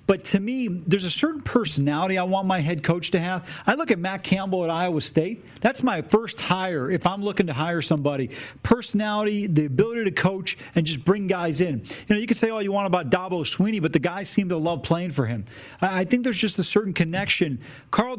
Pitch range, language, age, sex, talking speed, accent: 165-205 Hz, English, 40-59, male, 230 wpm, American